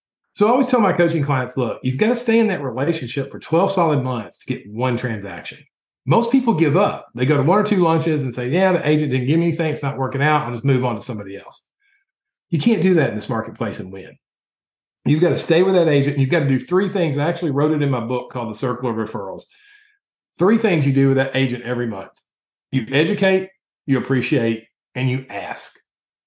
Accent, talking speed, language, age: American, 240 wpm, English, 40-59